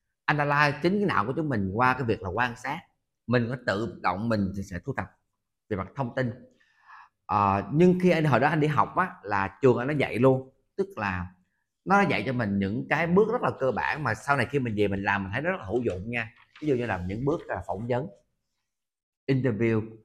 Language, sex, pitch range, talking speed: Vietnamese, male, 105-150 Hz, 240 wpm